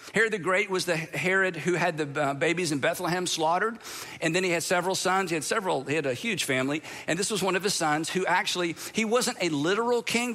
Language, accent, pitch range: English, American, 170-225 Hz